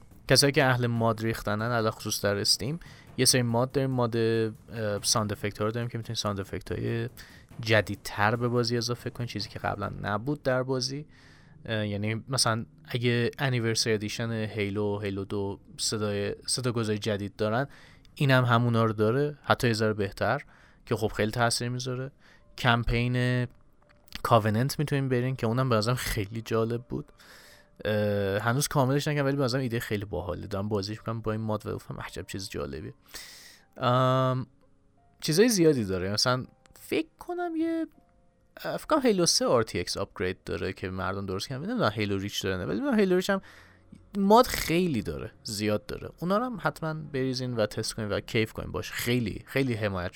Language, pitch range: Persian, 105-130 Hz